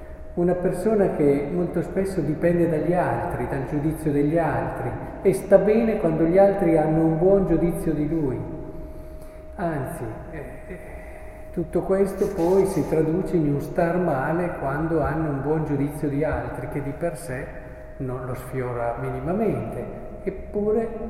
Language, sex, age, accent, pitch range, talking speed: Italian, male, 40-59, native, 130-180 Hz, 140 wpm